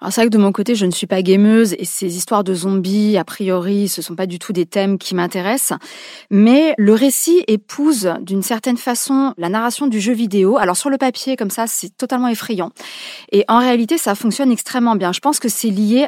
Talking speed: 230 wpm